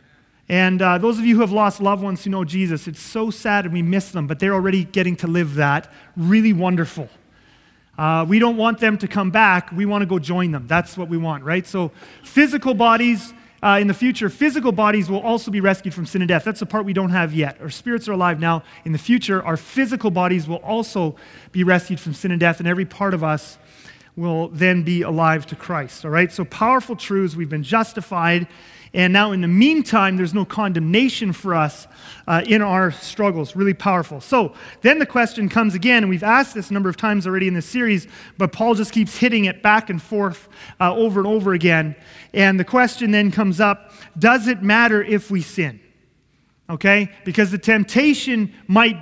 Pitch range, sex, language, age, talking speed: 175-220 Hz, male, English, 30-49, 215 wpm